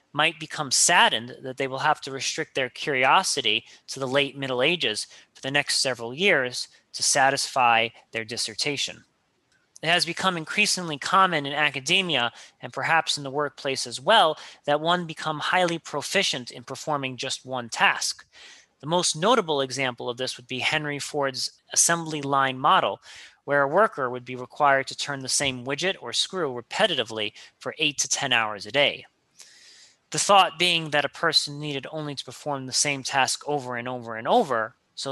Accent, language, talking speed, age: American, English, 175 wpm, 30-49